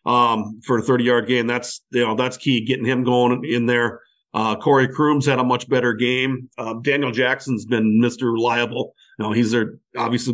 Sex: male